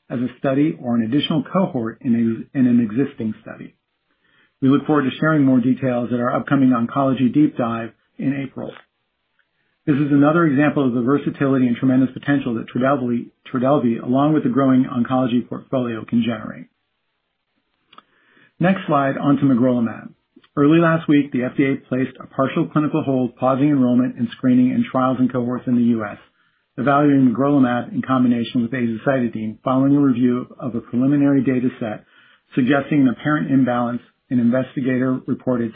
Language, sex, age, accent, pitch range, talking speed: English, male, 50-69, American, 120-145 Hz, 160 wpm